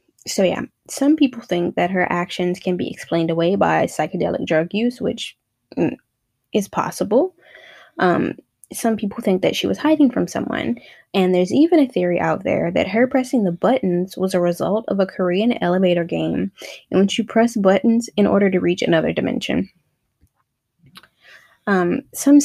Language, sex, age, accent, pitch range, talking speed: English, female, 10-29, American, 180-230 Hz, 165 wpm